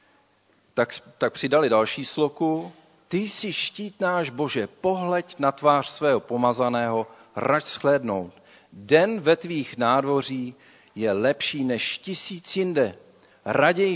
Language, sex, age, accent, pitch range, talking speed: Czech, male, 50-69, native, 120-180 Hz, 110 wpm